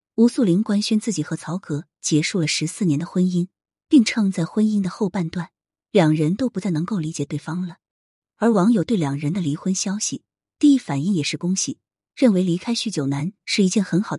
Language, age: Chinese, 20-39